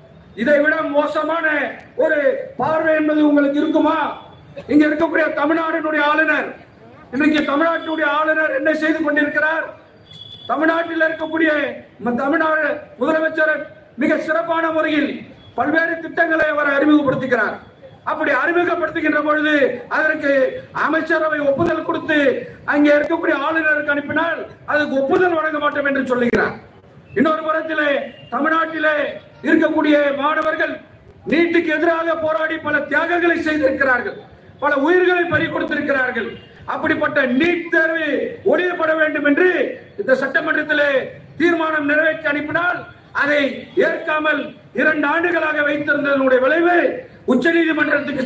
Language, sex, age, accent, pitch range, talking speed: Tamil, male, 40-59, native, 290-320 Hz, 65 wpm